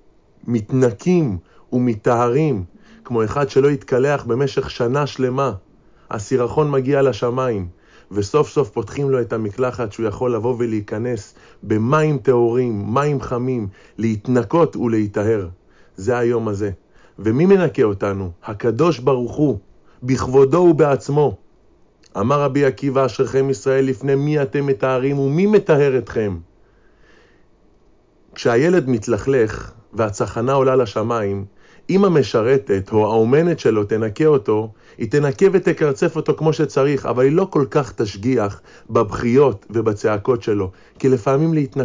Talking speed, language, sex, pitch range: 110 wpm, Hebrew, male, 110-145 Hz